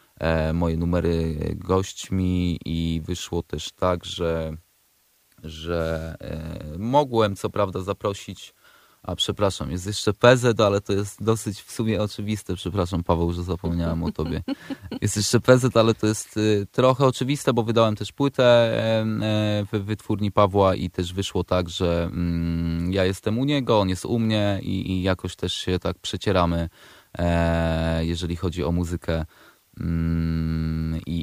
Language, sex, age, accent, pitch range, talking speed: Polish, male, 20-39, native, 85-110 Hz, 135 wpm